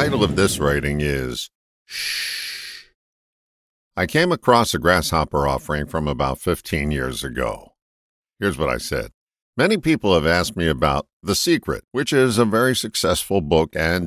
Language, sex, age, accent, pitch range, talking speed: English, male, 50-69, American, 75-115 Hz, 160 wpm